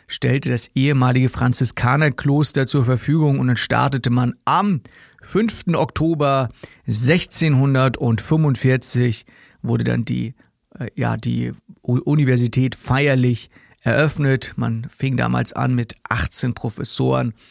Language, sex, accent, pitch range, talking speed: German, male, German, 125-150 Hz, 100 wpm